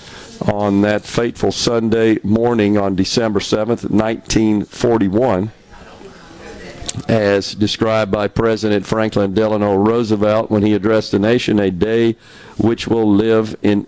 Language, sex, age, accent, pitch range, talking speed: English, male, 50-69, American, 100-115 Hz, 115 wpm